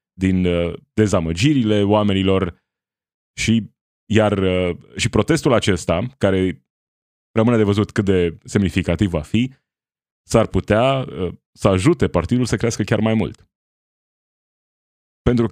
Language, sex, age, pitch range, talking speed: Romanian, male, 20-39, 90-115 Hz, 110 wpm